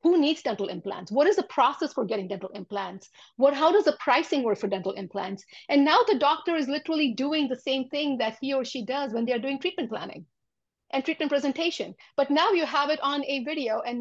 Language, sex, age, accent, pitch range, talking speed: English, female, 50-69, Indian, 235-290 Hz, 230 wpm